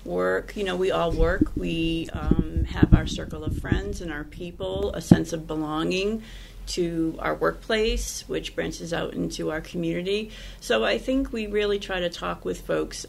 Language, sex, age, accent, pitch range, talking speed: English, female, 40-59, American, 150-190 Hz, 180 wpm